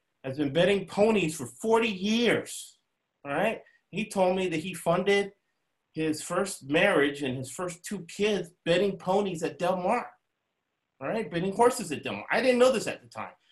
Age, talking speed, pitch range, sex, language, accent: 30-49, 185 wpm, 130-175 Hz, male, English, American